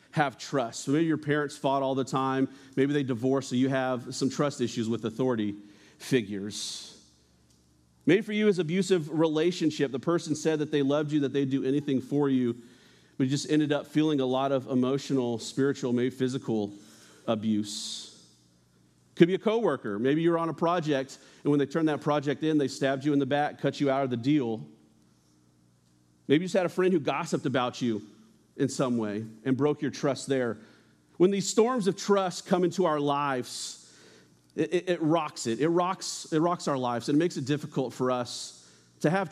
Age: 40-59